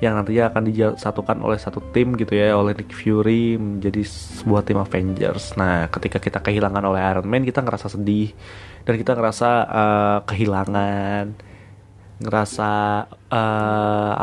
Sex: male